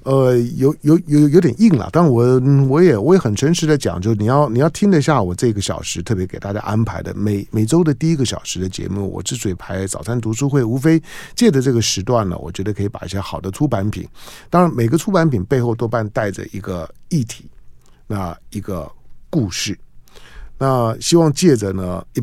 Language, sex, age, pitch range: Chinese, male, 50-69, 100-140 Hz